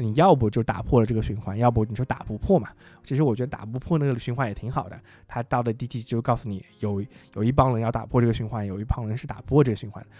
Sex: male